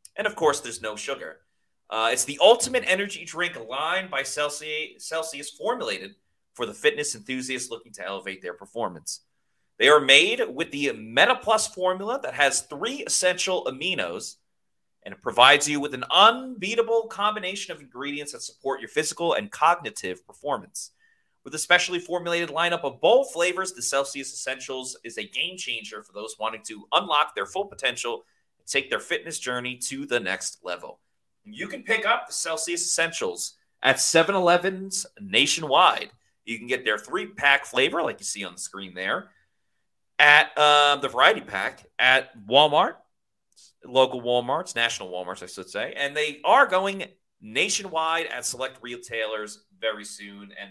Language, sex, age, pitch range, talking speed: English, male, 30-49, 125-195 Hz, 160 wpm